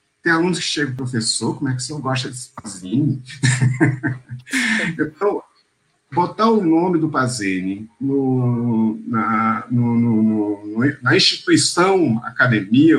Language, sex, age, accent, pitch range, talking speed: Portuguese, male, 50-69, Brazilian, 115-160 Hz, 125 wpm